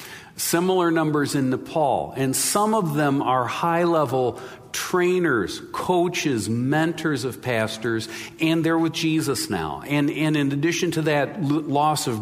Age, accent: 50-69, American